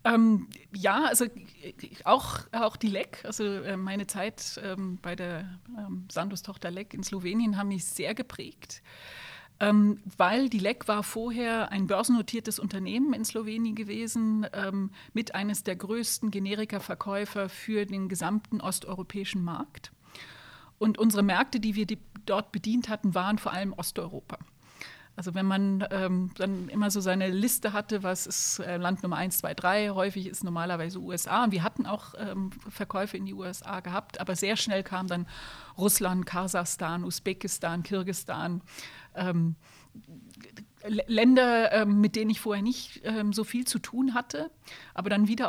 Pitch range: 190-220 Hz